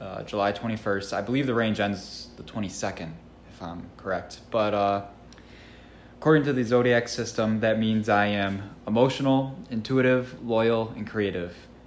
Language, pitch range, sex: English, 95-120 Hz, male